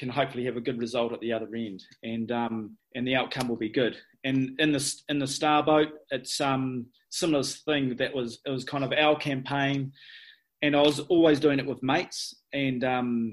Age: 30-49